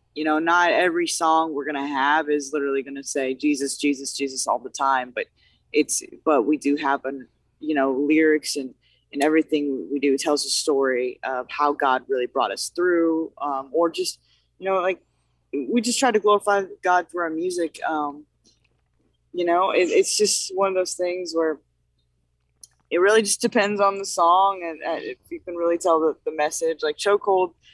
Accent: American